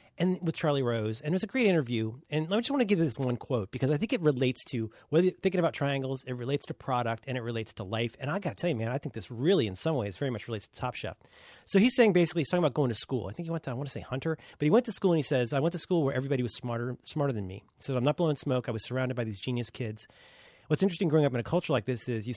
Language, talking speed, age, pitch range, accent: English, 325 wpm, 30-49, 120-175 Hz, American